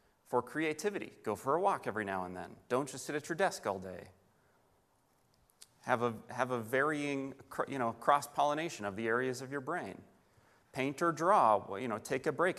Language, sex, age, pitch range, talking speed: English, male, 30-49, 105-140 Hz, 165 wpm